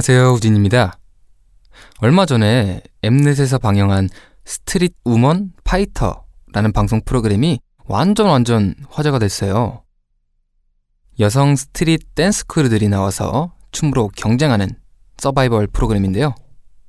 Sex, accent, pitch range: male, native, 105-145 Hz